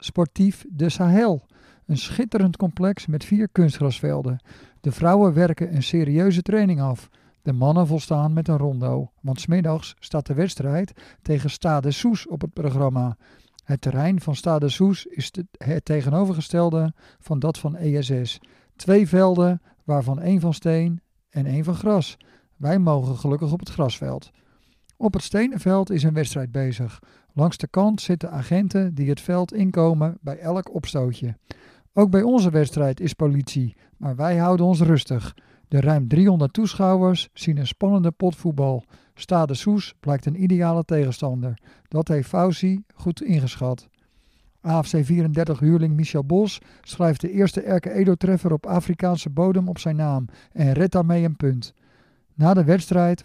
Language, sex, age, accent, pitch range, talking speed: Dutch, male, 50-69, Dutch, 140-180 Hz, 150 wpm